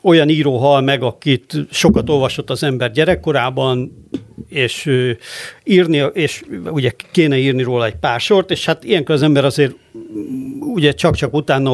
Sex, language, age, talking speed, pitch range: male, Hungarian, 60-79, 150 wpm, 130-170 Hz